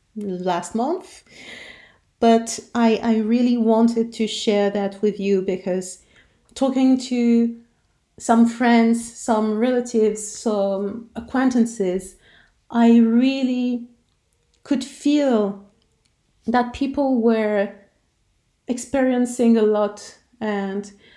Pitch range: 205-245 Hz